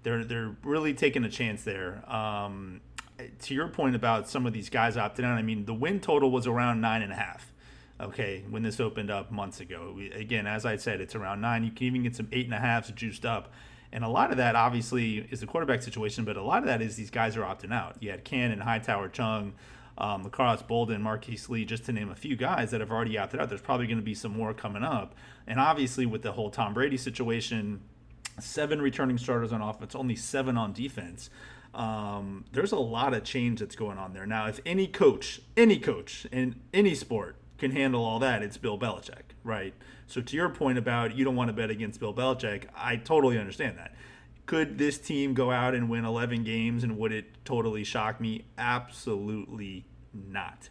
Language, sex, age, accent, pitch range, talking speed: English, male, 30-49, American, 110-125 Hz, 220 wpm